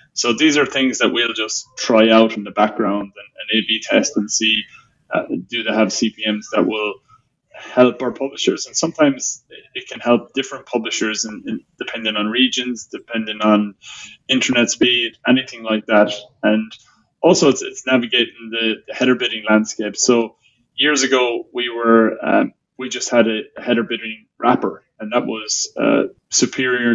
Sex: male